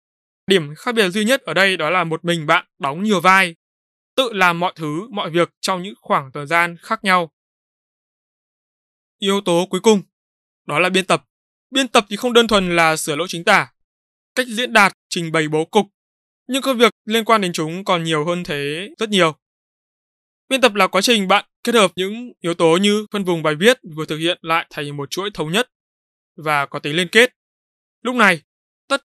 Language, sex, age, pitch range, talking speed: Vietnamese, male, 20-39, 165-215 Hz, 205 wpm